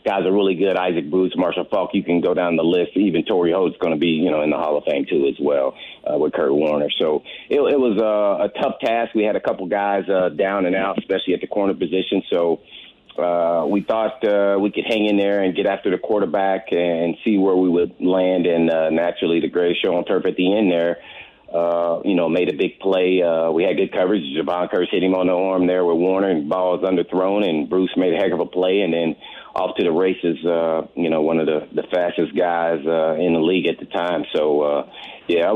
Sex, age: male, 40-59